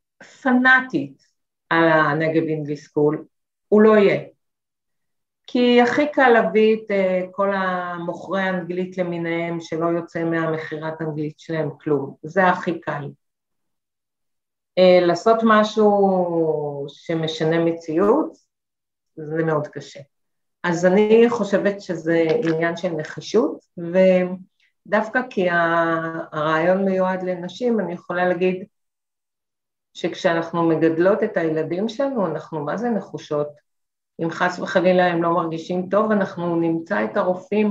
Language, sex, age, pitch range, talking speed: Hebrew, female, 50-69, 160-200 Hz, 105 wpm